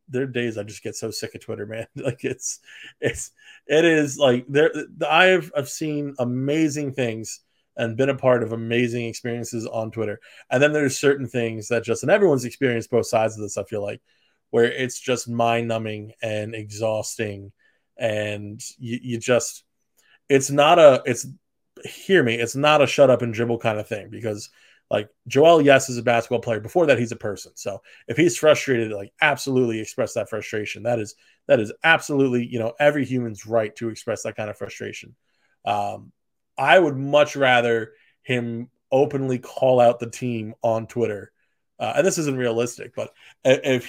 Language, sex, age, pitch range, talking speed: English, male, 20-39, 115-140 Hz, 185 wpm